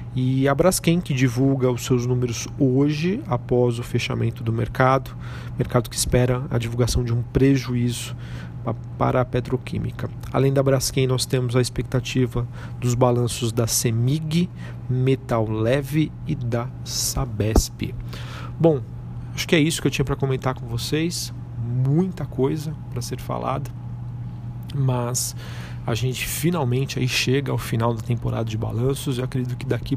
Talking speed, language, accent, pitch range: 150 wpm, Portuguese, Brazilian, 115-130 Hz